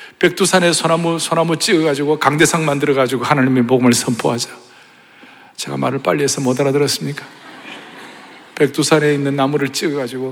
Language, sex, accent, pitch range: Korean, male, native, 155-195 Hz